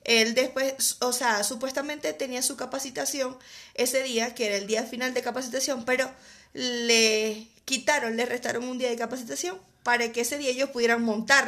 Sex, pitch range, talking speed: female, 230-285 Hz, 175 wpm